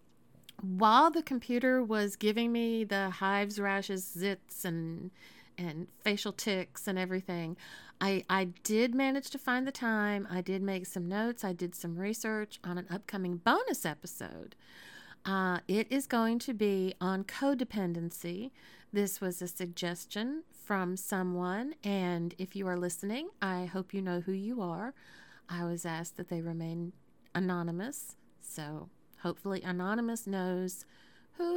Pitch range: 180-225 Hz